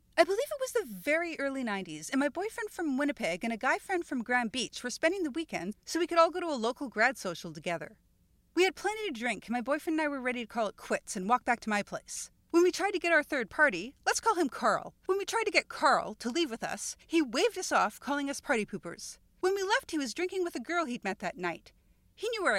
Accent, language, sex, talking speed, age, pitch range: American, English, female, 275 wpm, 40-59, 240-375 Hz